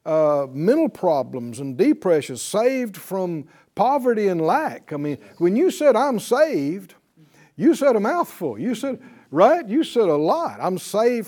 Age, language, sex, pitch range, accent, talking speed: 60-79, English, male, 170-255 Hz, American, 160 wpm